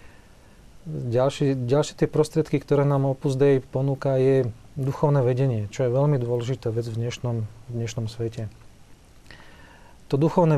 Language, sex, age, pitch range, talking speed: Slovak, male, 40-59, 120-135 Hz, 130 wpm